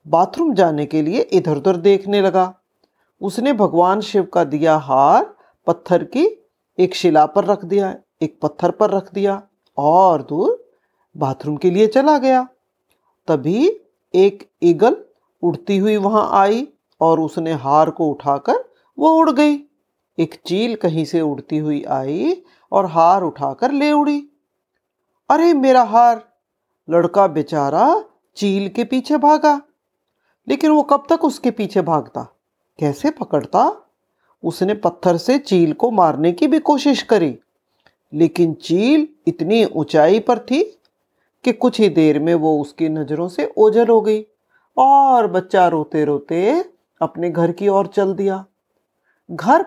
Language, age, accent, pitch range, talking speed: Hindi, 50-69, native, 170-285 Hz, 140 wpm